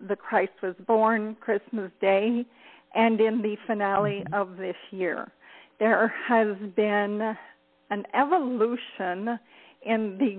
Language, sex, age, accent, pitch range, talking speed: English, female, 50-69, American, 195-240 Hz, 115 wpm